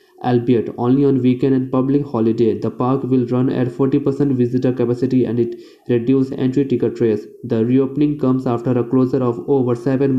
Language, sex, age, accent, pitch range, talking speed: Hindi, male, 20-39, native, 120-135 Hz, 175 wpm